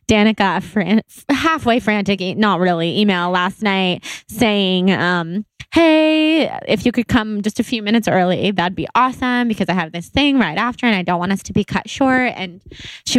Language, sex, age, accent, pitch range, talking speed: English, female, 20-39, American, 180-220 Hz, 195 wpm